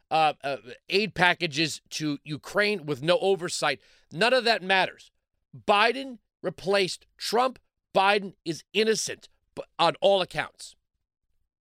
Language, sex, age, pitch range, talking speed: English, male, 40-59, 140-200 Hz, 115 wpm